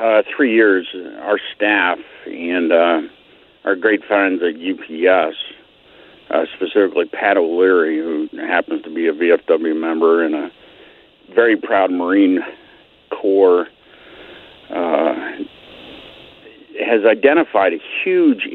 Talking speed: 110 wpm